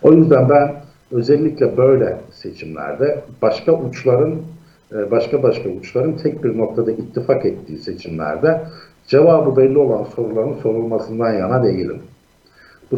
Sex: male